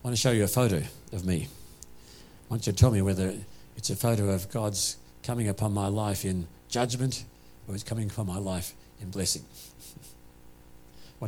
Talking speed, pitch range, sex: 190 wpm, 80-110 Hz, male